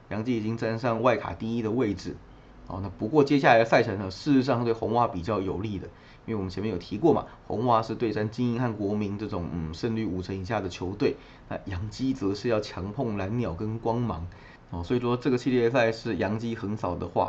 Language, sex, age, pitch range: Chinese, male, 20-39, 95-120 Hz